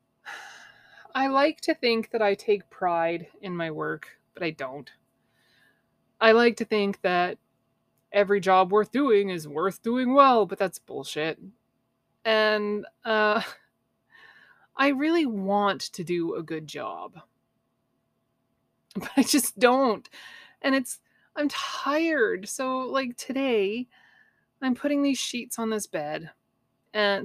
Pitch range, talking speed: 175-250 Hz, 130 wpm